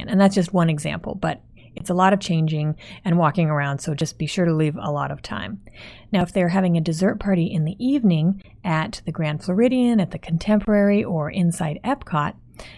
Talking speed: 205 wpm